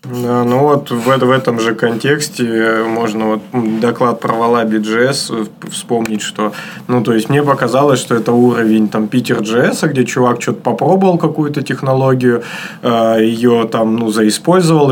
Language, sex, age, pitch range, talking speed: Russian, male, 20-39, 110-130 Hz, 135 wpm